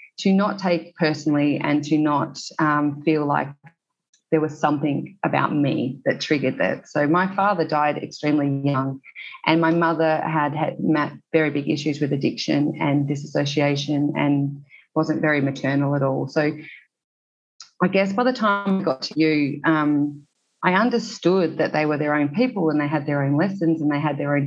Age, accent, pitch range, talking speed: 30-49, Australian, 145-165 Hz, 180 wpm